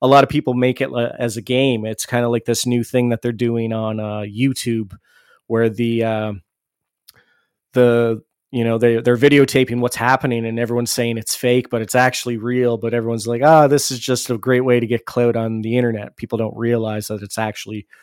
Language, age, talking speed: English, 20-39, 215 wpm